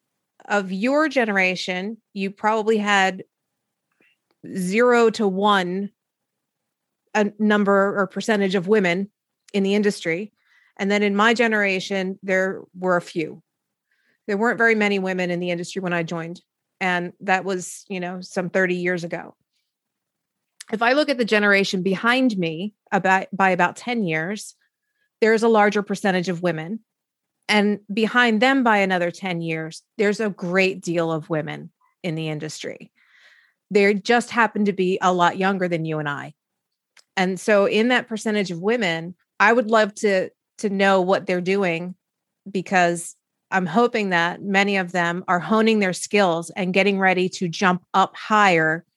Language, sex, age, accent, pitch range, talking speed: English, female, 30-49, American, 180-210 Hz, 155 wpm